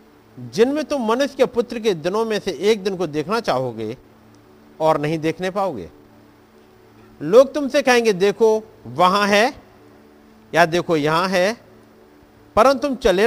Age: 50-69